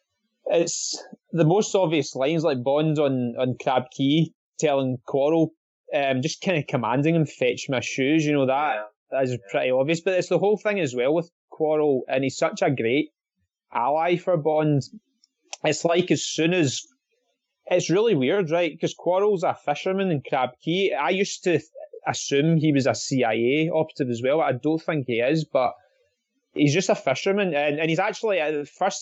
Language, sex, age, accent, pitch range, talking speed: English, male, 20-39, British, 135-185 Hz, 185 wpm